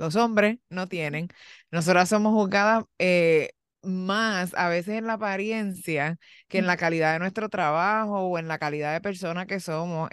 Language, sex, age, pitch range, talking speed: Spanish, female, 20-39, 185-230 Hz, 170 wpm